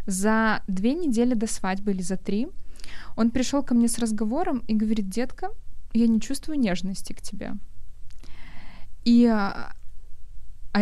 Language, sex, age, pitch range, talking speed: Russian, female, 20-39, 195-240 Hz, 140 wpm